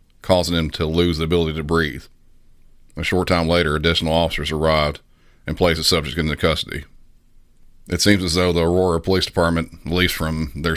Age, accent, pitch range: 40-59, American, 80-85 Hz